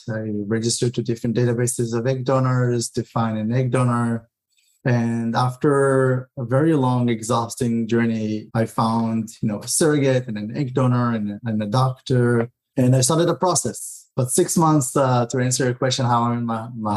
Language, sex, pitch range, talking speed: English, male, 115-130 Hz, 185 wpm